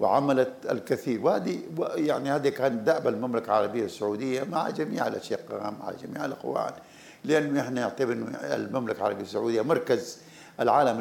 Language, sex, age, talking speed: Arabic, male, 50-69, 130 wpm